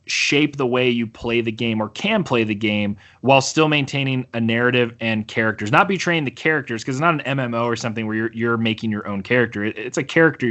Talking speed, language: 235 wpm, English